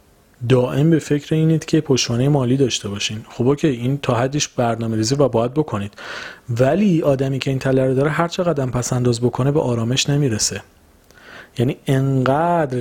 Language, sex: Persian, male